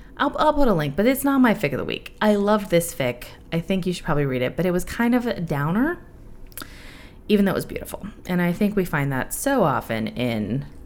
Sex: female